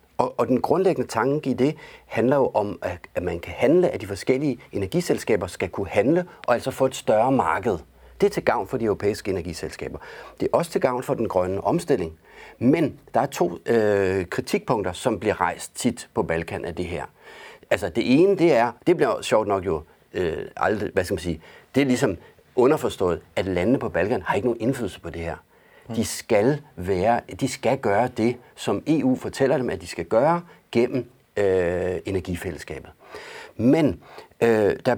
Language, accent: Danish, native